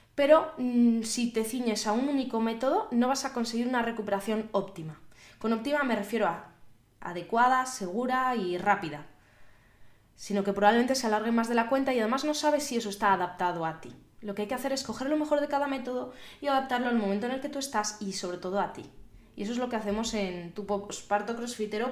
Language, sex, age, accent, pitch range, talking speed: Spanish, female, 20-39, Spanish, 195-250 Hz, 215 wpm